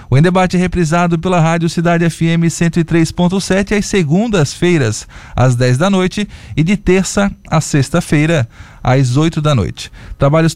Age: 20-39